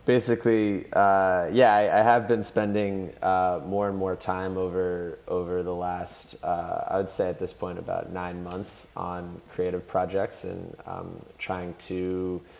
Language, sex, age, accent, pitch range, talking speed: English, male, 20-39, American, 90-100 Hz, 160 wpm